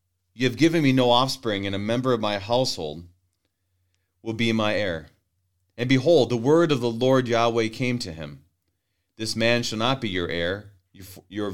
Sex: male